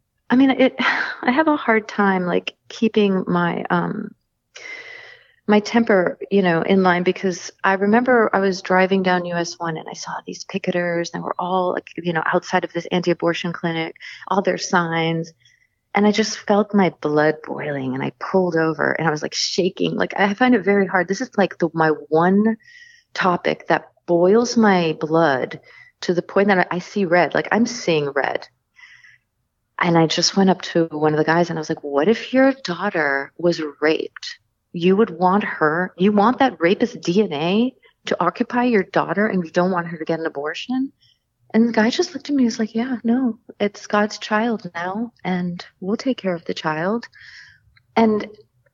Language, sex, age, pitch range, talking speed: English, female, 30-49, 170-225 Hz, 195 wpm